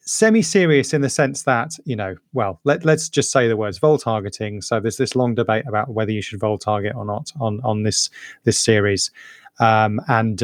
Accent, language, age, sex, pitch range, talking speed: British, English, 30-49, male, 110-135 Hz, 215 wpm